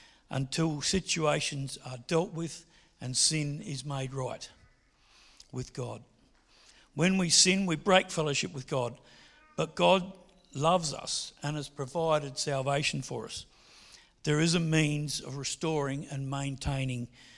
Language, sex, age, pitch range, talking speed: English, male, 60-79, 140-180 Hz, 130 wpm